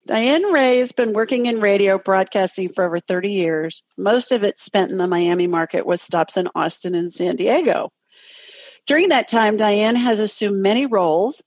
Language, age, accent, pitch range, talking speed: English, 50-69, American, 170-220 Hz, 185 wpm